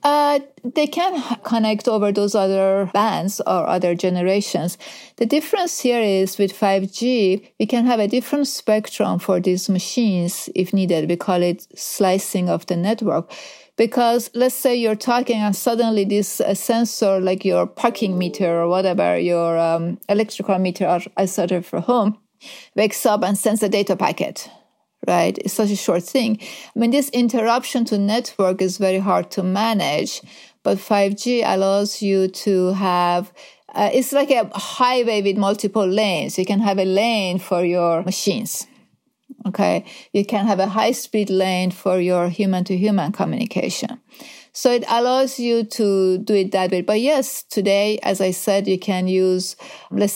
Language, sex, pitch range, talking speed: English, female, 185-235 Hz, 165 wpm